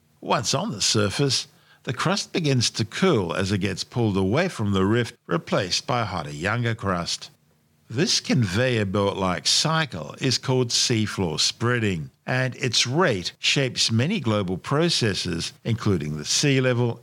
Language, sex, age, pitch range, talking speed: English, male, 50-69, 95-130 Hz, 150 wpm